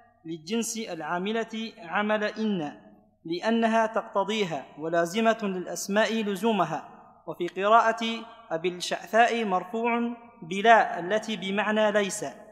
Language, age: Arabic, 40-59